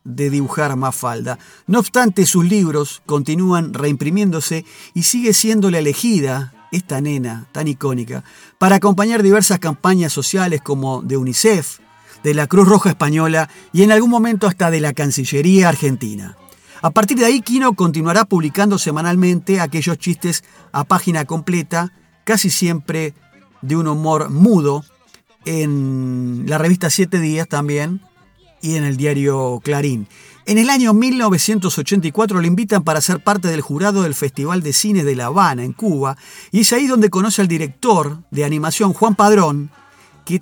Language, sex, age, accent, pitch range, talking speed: Spanish, male, 40-59, Argentinian, 145-200 Hz, 155 wpm